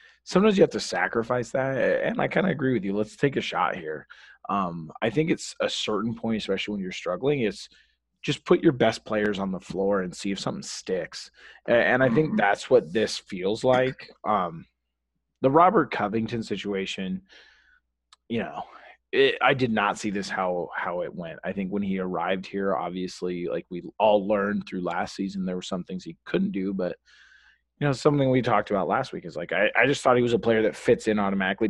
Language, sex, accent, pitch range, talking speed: English, male, American, 95-120 Hz, 210 wpm